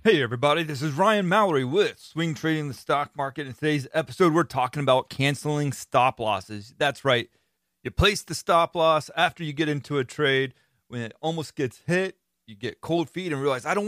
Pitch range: 115-155 Hz